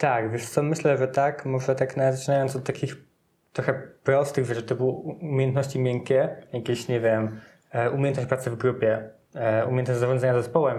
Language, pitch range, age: Polish, 125-145 Hz, 20-39